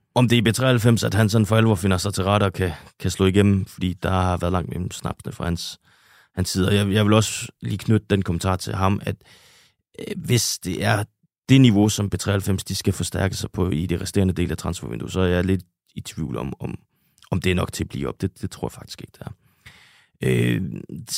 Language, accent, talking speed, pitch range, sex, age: Danish, native, 245 wpm, 90-105 Hz, male, 30-49